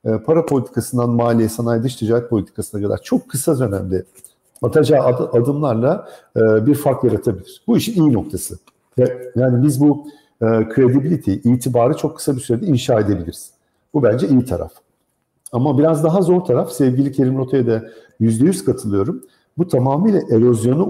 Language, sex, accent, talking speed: Turkish, male, native, 140 wpm